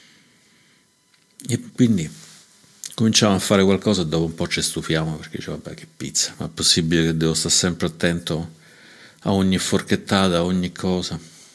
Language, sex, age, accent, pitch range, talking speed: Italian, male, 50-69, native, 85-95 Hz, 160 wpm